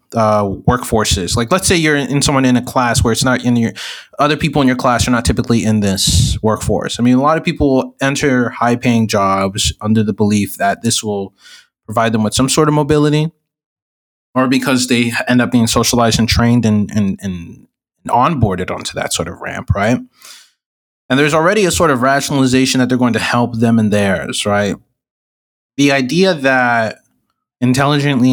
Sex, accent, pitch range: male, American, 110-135 Hz